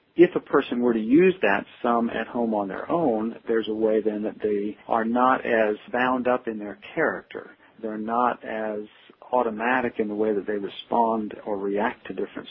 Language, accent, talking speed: English, American, 195 wpm